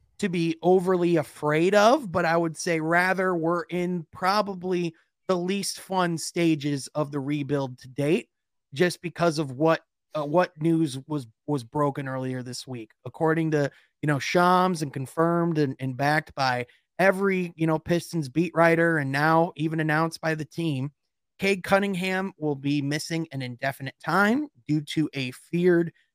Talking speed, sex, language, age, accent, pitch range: 165 wpm, male, English, 30-49, American, 145-180 Hz